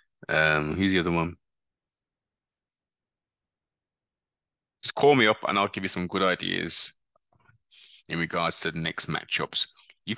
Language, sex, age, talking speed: English, male, 20-39, 135 wpm